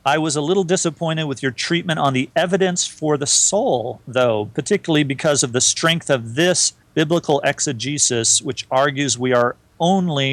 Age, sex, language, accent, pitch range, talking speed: 40-59, male, English, American, 120-155 Hz, 170 wpm